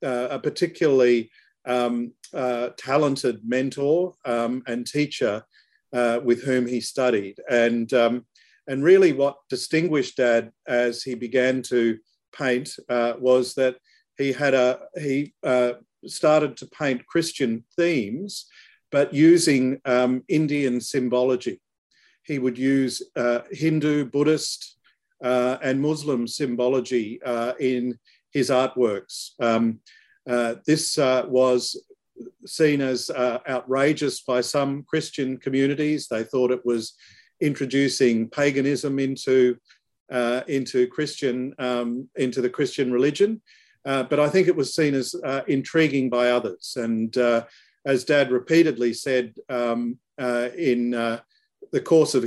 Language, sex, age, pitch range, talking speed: English, male, 50-69, 125-145 Hz, 130 wpm